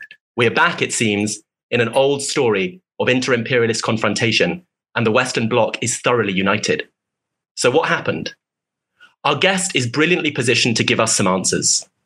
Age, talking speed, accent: 30-49, 160 wpm, British